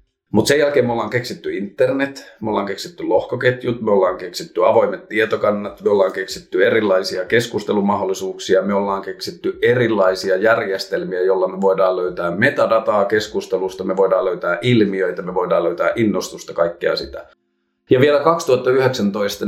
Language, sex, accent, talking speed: Finnish, male, native, 140 wpm